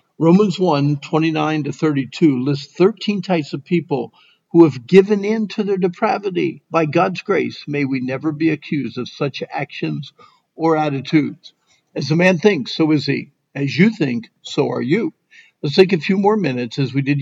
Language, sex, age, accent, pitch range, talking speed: English, male, 50-69, American, 140-180 Hz, 175 wpm